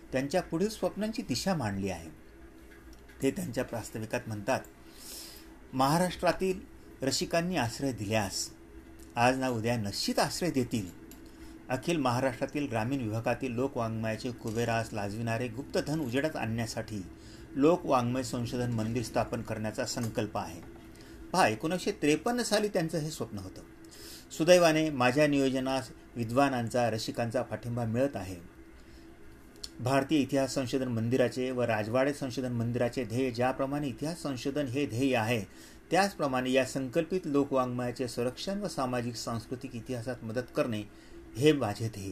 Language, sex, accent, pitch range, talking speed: Marathi, male, native, 110-145 Hz, 110 wpm